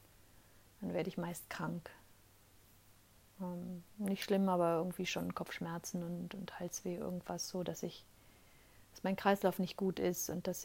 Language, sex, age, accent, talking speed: German, female, 30-49, German, 145 wpm